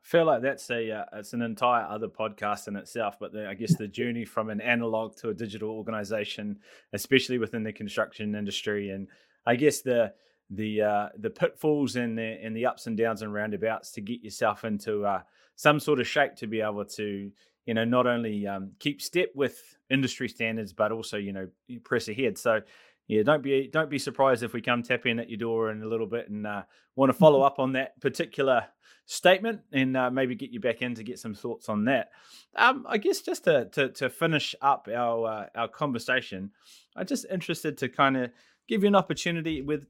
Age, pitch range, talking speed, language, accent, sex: 20-39, 110-150 Hz, 215 wpm, English, Australian, male